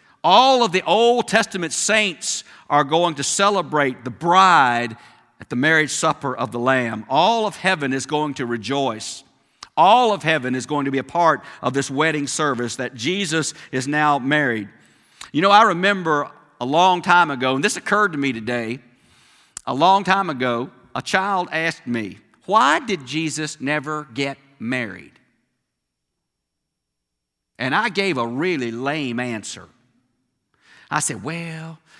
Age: 50-69